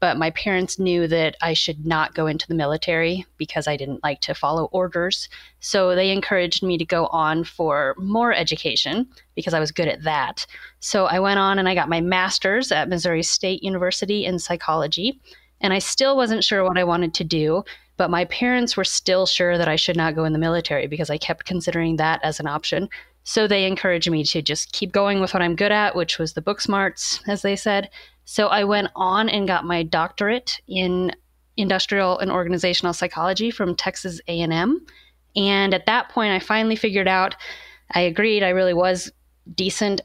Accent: American